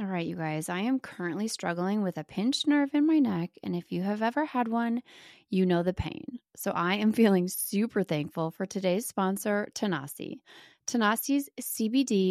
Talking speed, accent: 185 wpm, American